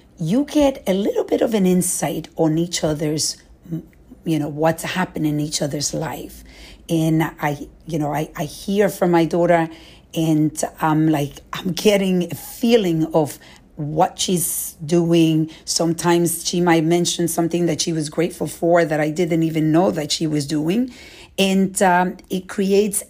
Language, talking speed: English, 165 wpm